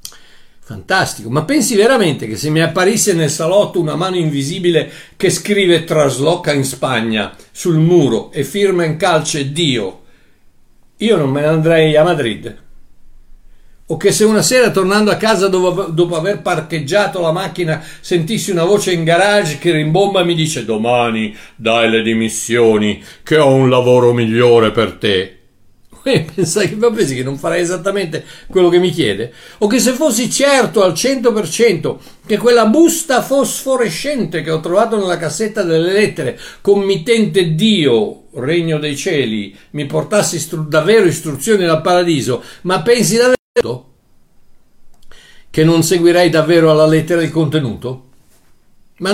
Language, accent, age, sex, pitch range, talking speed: Italian, native, 60-79, male, 140-200 Hz, 145 wpm